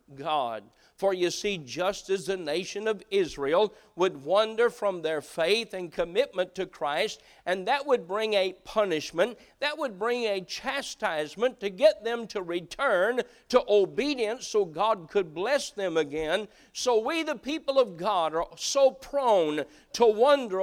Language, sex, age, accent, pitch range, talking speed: English, male, 50-69, American, 180-245 Hz, 155 wpm